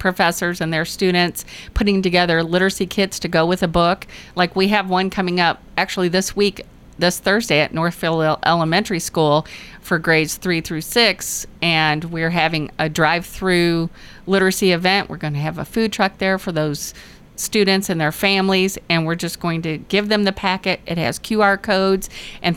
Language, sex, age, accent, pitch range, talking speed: English, female, 50-69, American, 165-195 Hz, 180 wpm